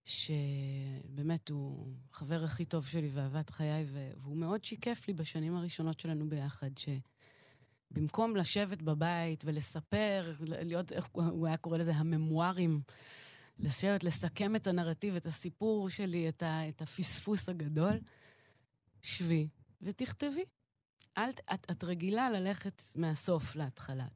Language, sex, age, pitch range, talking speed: Hebrew, female, 30-49, 145-185 Hz, 120 wpm